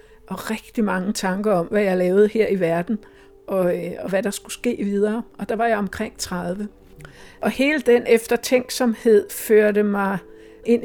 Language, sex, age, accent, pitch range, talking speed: Danish, female, 60-79, native, 195-235 Hz, 170 wpm